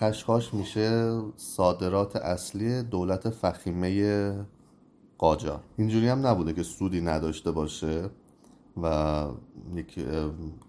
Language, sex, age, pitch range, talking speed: Persian, male, 30-49, 80-100 Hz, 90 wpm